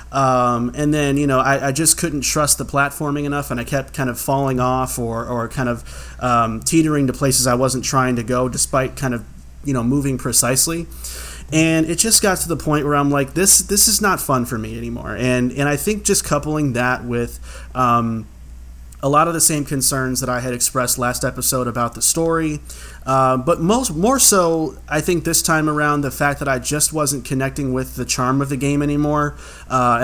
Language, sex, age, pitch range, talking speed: English, male, 30-49, 125-155 Hz, 215 wpm